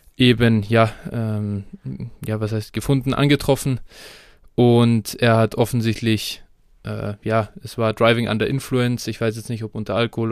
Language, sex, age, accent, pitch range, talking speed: German, male, 20-39, German, 110-125 Hz, 150 wpm